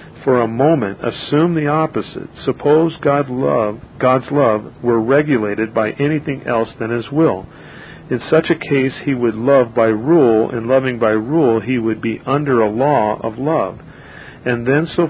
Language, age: English, 50-69